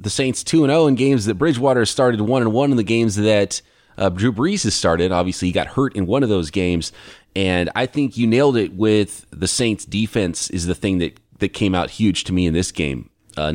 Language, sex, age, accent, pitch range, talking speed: English, male, 30-49, American, 95-115 Hz, 230 wpm